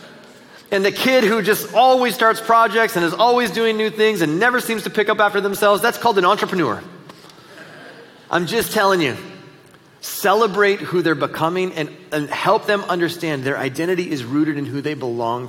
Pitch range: 140-190 Hz